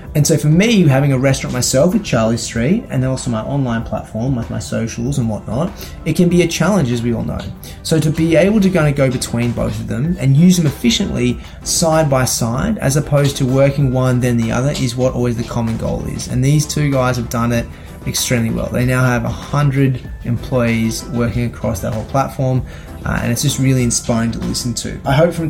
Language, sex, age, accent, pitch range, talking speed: English, male, 20-39, Australian, 120-145 Hz, 225 wpm